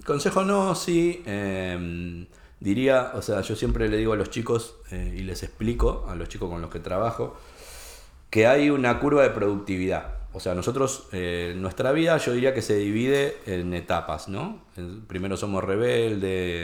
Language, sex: Spanish, male